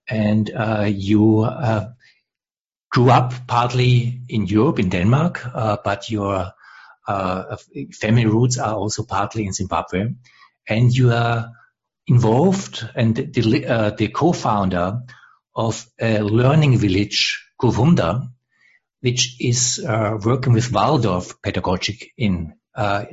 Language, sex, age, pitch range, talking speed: English, male, 60-79, 105-125 Hz, 120 wpm